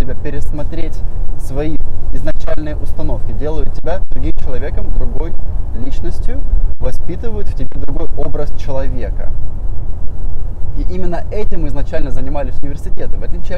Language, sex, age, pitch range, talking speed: Russian, male, 20-39, 80-105 Hz, 105 wpm